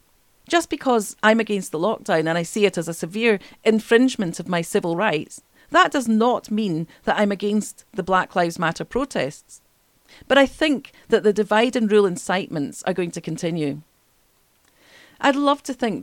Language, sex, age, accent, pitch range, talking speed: English, female, 40-59, British, 175-235 Hz, 180 wpm